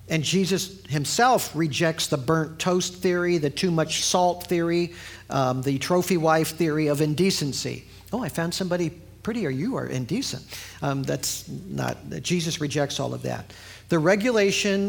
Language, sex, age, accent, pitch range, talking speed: English, male, 50-69, American, 130-175 Hz, 155 wpm